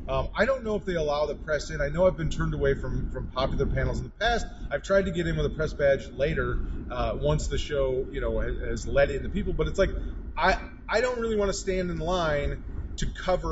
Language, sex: English, male